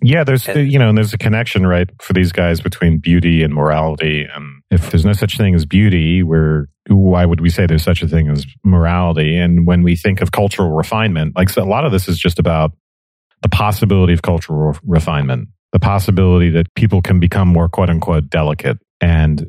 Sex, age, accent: male, 40-59, American